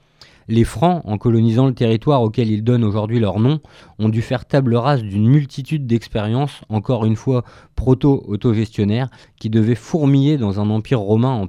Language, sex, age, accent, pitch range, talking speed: French, male, 20-39, French, 110-130 Hz, 165 wpm